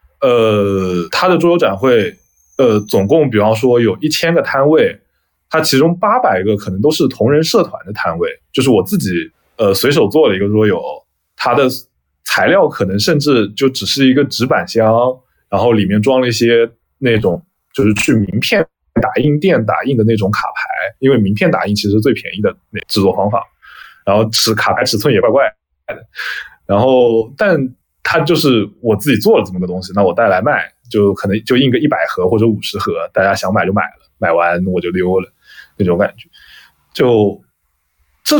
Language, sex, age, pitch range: Chinese, male, 20-39, 100-135 Hz